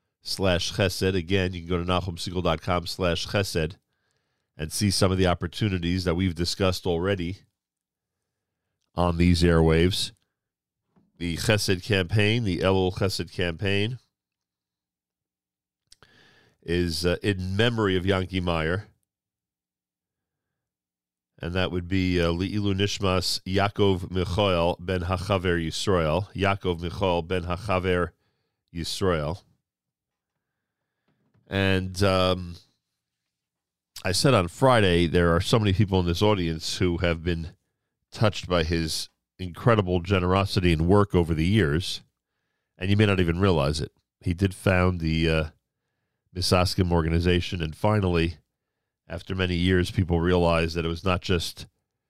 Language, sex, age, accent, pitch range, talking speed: English, male, 40-59, American, 85-95 Hz, 125 wpm